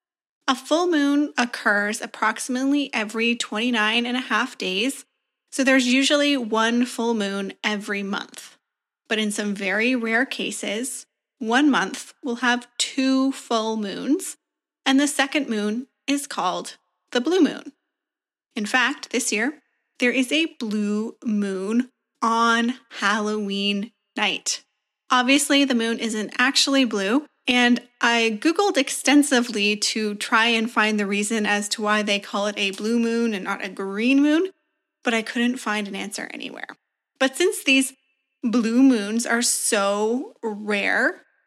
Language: English